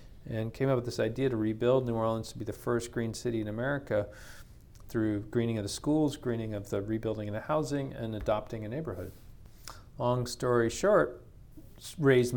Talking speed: 185 wpm